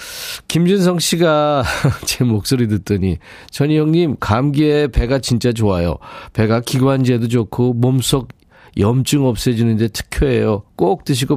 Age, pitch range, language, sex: 40-59, 105-140 Hz, Korean, male